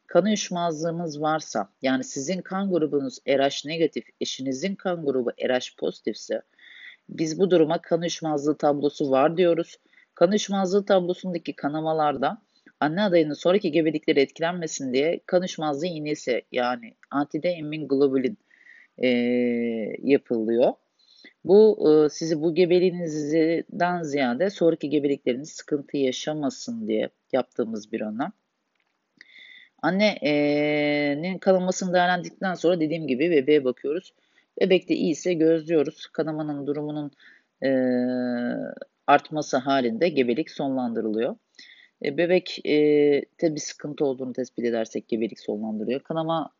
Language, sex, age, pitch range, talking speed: Turkish, female, 40-59, 140-175 Hz, 105 wpm